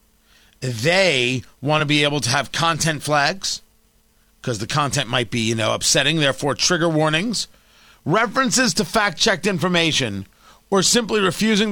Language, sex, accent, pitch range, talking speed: English, male, American, 145-210 Hz, 140 wpm